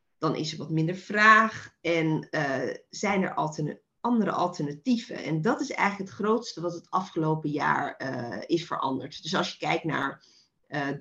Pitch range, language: 160-210 Hz, Dutch